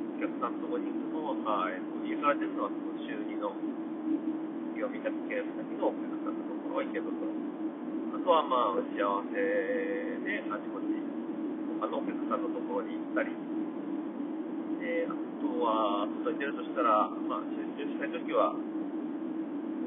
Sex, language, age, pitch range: male, Japanese, 40-59, 300-315 Hz